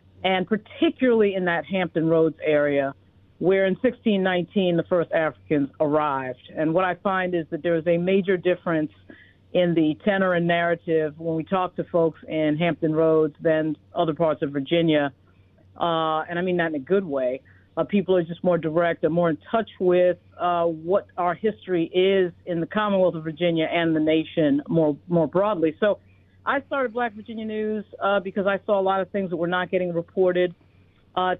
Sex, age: female, 50-69